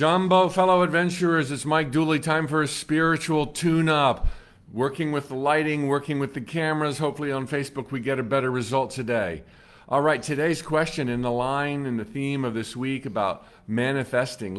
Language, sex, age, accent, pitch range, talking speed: English, male, 50-69, American, 115-150 Hz, 175 wpm